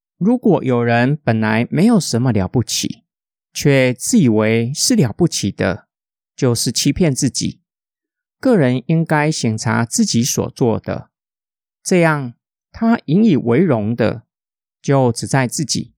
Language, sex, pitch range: Chinese, male, 115-170 Hz